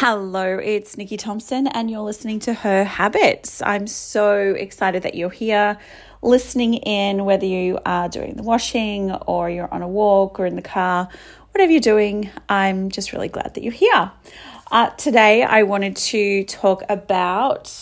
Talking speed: 170 wpm